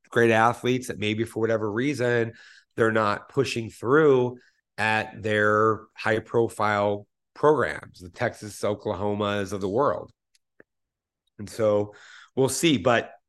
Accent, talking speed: American, 115 wpm